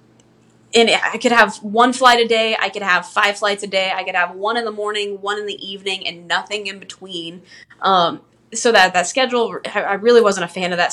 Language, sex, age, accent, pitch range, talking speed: English, female, 20-39, American, 175-215 Hz, 230 wpm